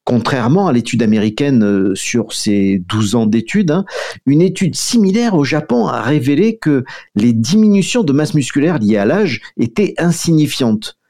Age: 50-69